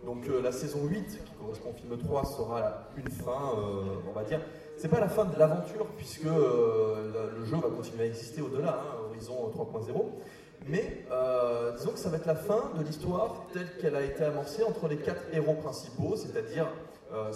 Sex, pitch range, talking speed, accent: male, 120-165 Hz, 210 wpm, French